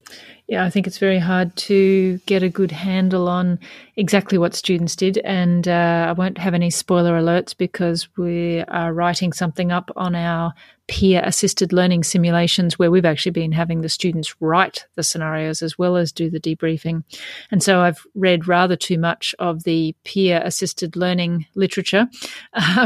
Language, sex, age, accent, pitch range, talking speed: English, female, 30-49, Australian, 175-200 Hz, 170 wpm